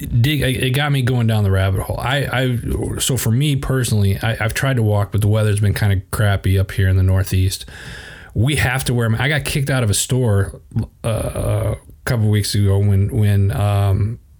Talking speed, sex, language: 215 wpm, male, English